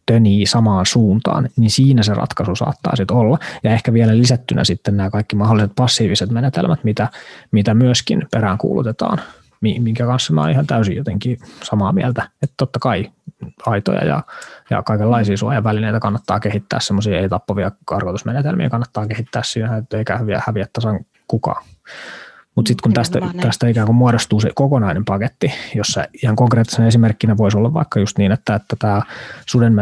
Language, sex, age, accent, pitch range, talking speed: Finnish, male, 20-39, native, 105-120 Hz, 155 wpm